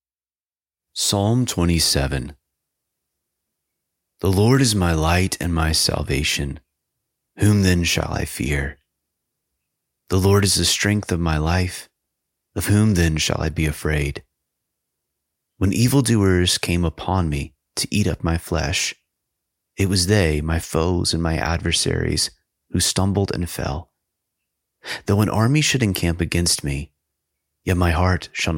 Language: English